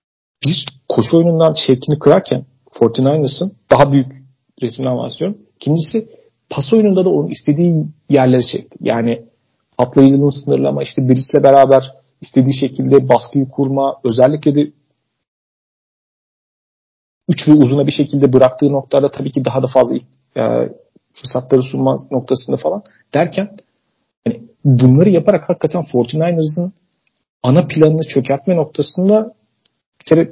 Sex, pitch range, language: male, 130-160 Hz, Turkish